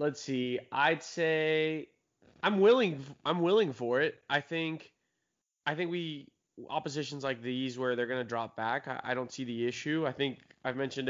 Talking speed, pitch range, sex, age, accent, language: 185 wpm, 125-145 Hz, male, 20-39, American, English